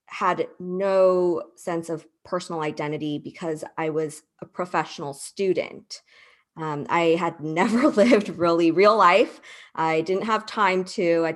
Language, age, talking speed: English, 20-39, 135 wpm